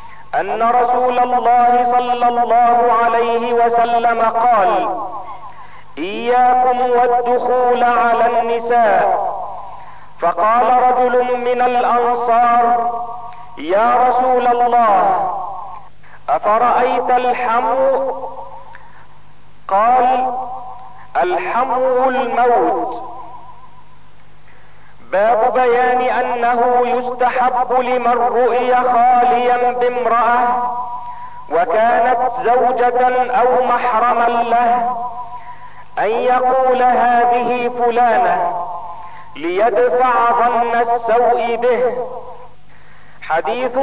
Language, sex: Arabic, male